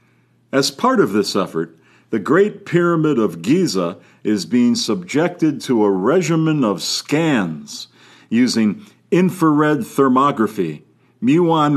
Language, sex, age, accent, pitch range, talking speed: English, male, 50-69, American, 100-160 Hz, 110 wpm